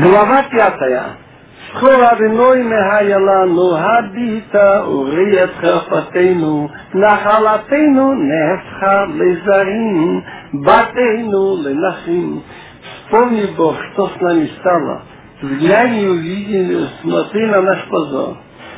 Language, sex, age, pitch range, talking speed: Russian, male, 50-69, 180-225 Hz, 65 wpm